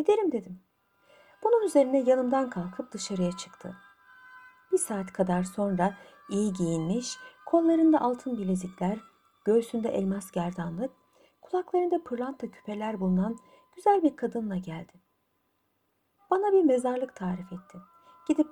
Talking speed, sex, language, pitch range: 110 wpm, female, Turkish, 195-290 Hz